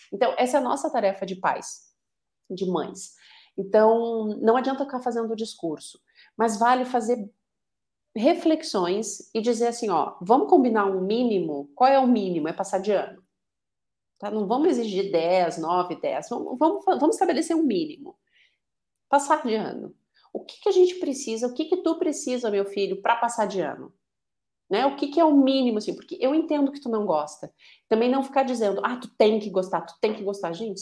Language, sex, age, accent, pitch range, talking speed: Portuguese, female, 40-59, Brazilian, 190-270 Hz, 195 wpm